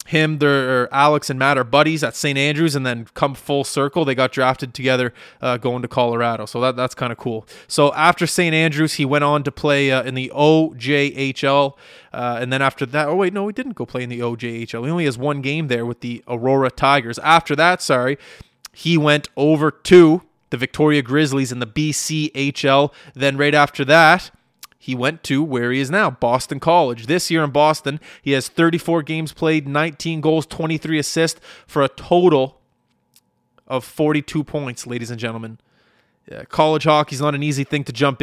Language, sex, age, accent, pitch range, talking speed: English, male, 20-39, American, 125-155 Hz, 195 wpm